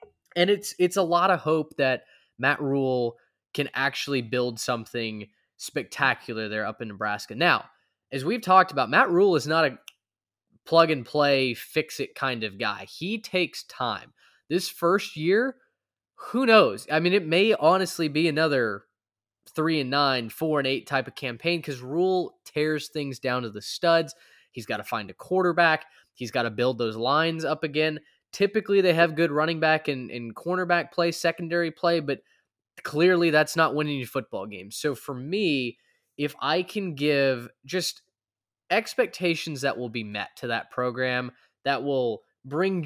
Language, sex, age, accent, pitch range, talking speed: English, male, 20-39, American, 125-170 Hz, 165 wpm